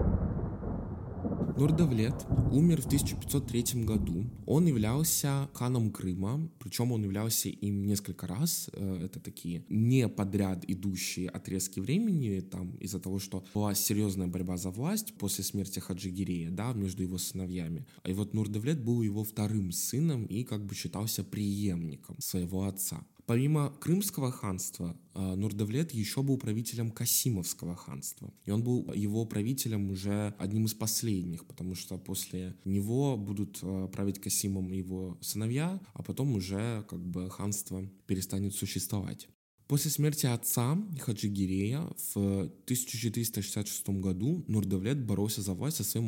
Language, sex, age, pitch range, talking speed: Russian, male, 20-39, 95-125 Hz, 130 wpm